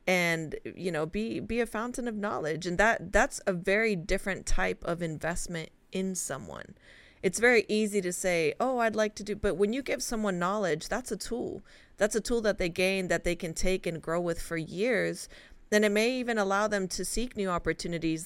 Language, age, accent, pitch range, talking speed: English, 30-49, American, 165-210 Hz, 210 wpm